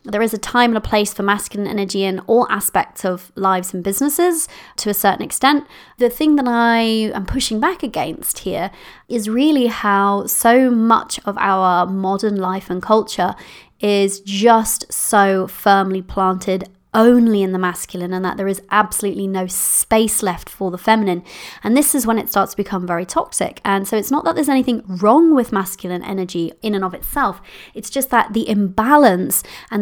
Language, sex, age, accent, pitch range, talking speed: English, female, 20-39, British, 195-240 Hz, 185 wpm